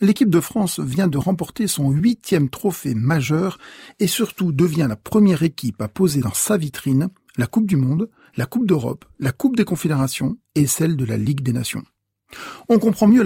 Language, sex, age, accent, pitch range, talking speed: French, male, 40-59, French, 145-195 Hz, 190 wpm